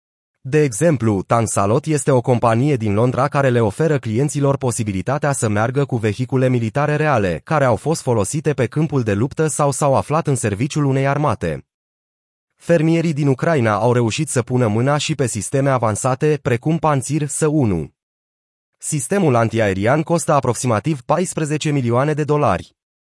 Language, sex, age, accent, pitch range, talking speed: Romanian, male, 30-49, native, 115-150 Hz, 150 wpm